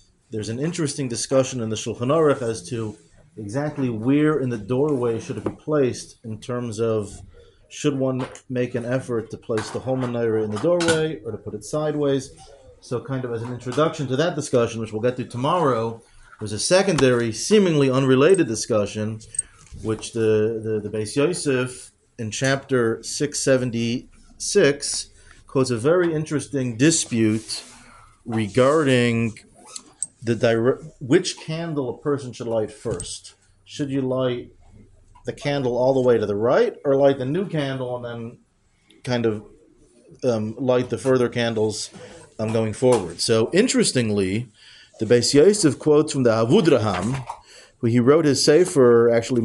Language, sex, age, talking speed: English, male, 40-59, 155 wpm